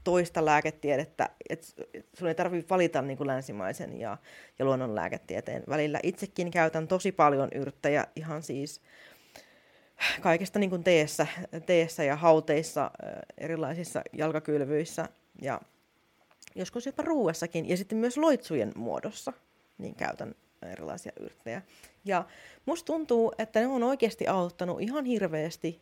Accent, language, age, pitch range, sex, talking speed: native, Finnish, 30-49, 155-195 Hz, female, 120 wpm